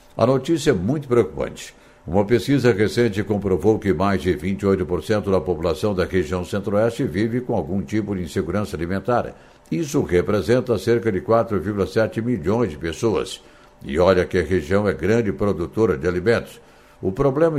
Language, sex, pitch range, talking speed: Portuguese, male, 95-115 Hz, 155 wpm